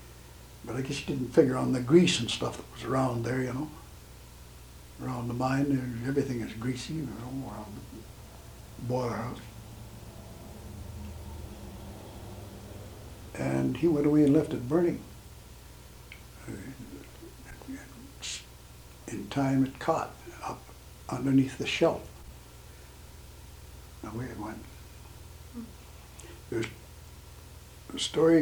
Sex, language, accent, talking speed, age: male, English, American, 110 wpm, 60-79